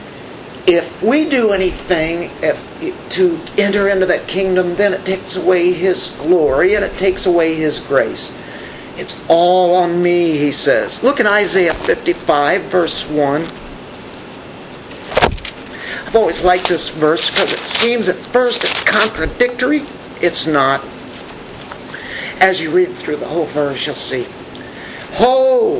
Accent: American